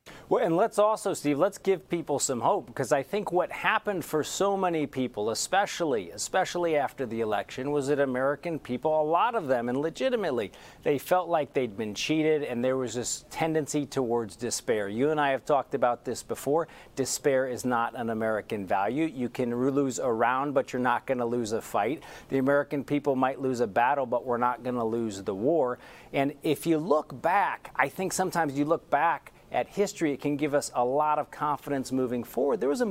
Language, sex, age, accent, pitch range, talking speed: English, male, 40-59, American, 130-170 Hz, 210 wpm